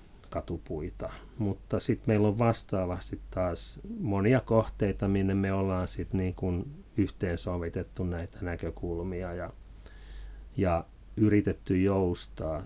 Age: 40-59